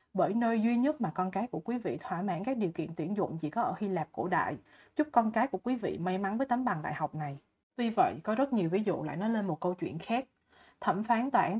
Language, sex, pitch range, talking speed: Vietnamese, female, 175-220 Hz, 290 wpm